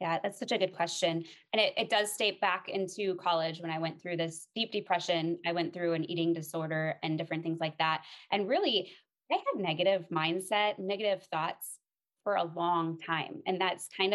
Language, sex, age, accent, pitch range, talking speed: English, female, 20-39, American, 165-205 Hz, 200 wpm